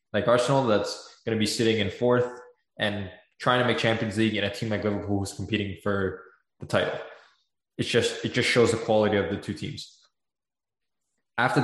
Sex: male